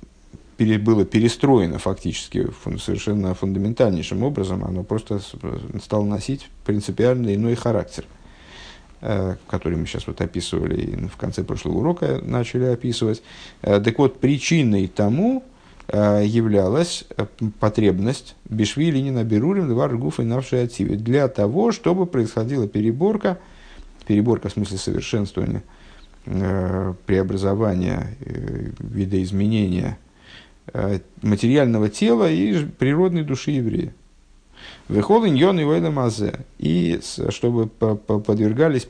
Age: 50-69